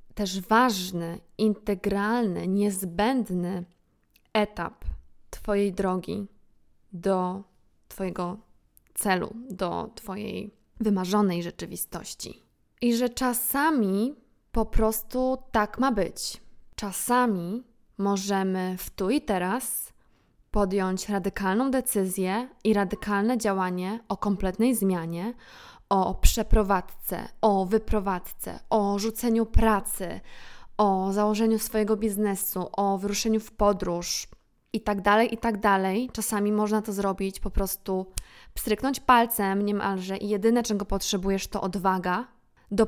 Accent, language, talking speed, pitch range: Polish, English, 105 wpm, 195-230 Hz